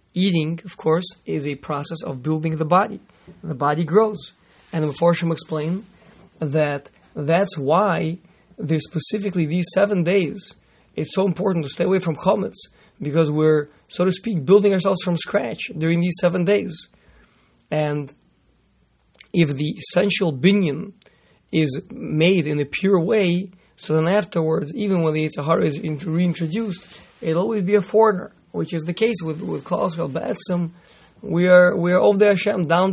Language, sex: English, male